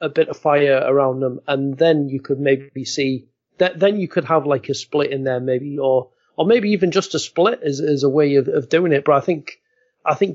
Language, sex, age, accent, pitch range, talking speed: English, male, 30-49, British, 135-175 Hz, 250 wpm